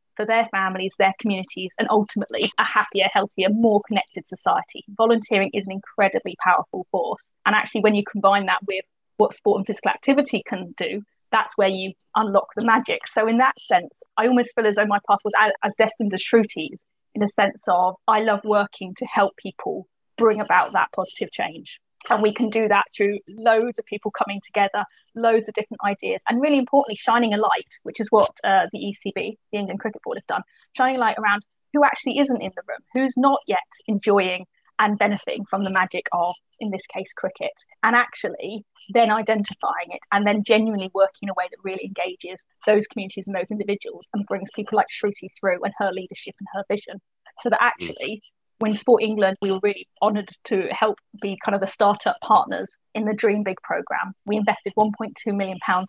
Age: 20-39